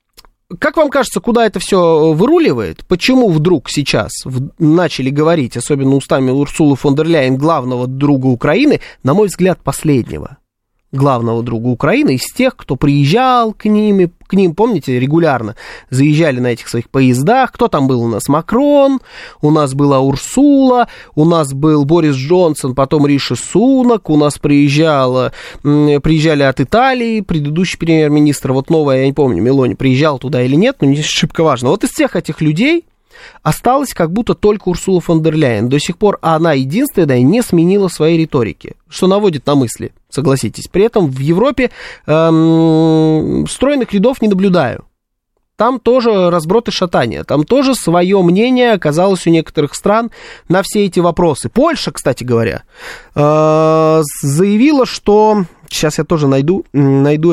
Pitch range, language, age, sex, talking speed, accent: 140-195 Hz, Russian, 20-39, male, 150 wpm, native